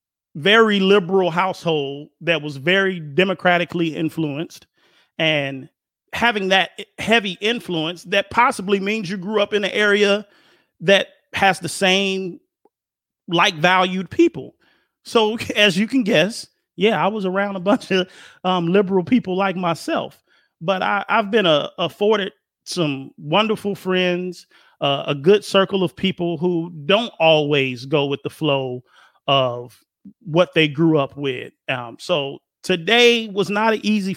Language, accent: English, American